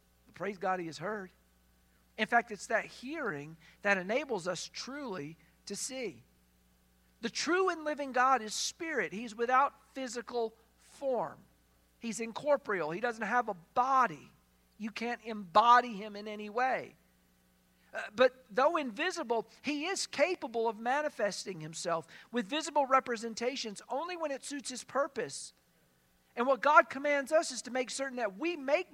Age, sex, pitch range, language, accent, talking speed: 50-69, male, 185-260 Hz, English, American, 150 wpm